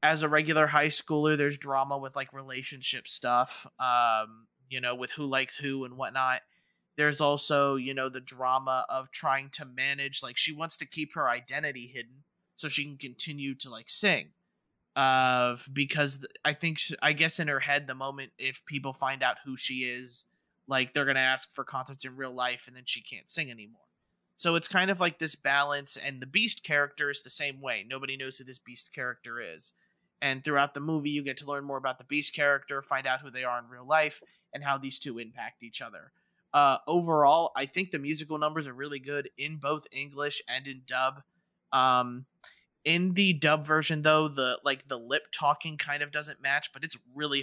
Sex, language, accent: male, English, American